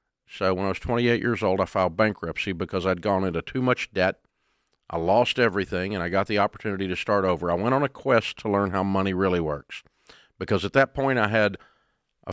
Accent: American